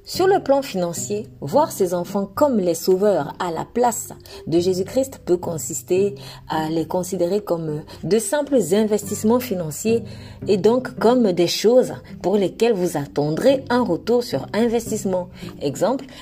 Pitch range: 170-230 Hz